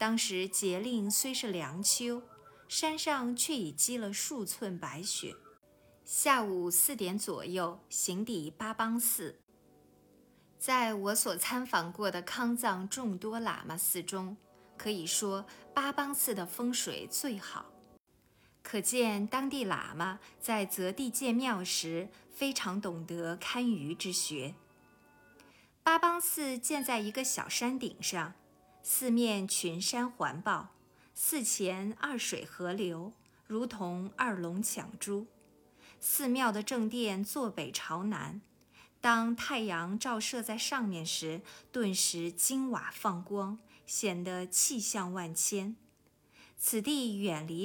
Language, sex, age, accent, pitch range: Chinese, female, 50-69, native, 185-240 Hz